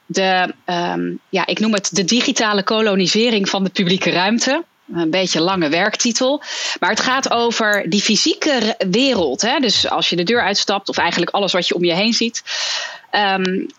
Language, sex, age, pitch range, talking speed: Dutch, female, 30-49, 200-255 Hz, 185 wpm